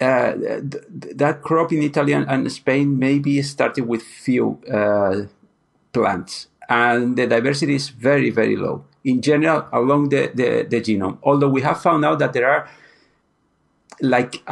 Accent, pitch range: Spanish, 120-150 Hz